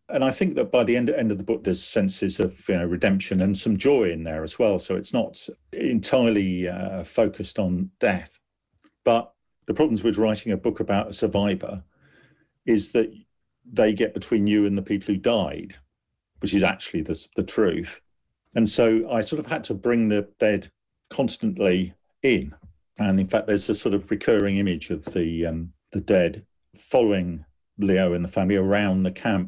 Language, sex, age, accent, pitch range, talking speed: English, male, 50-69, British, 90-110 Hz, 190 wpm